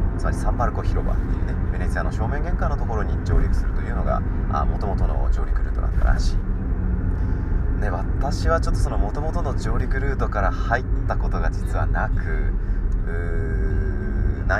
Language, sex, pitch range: Japanese, male, 85-95 Hz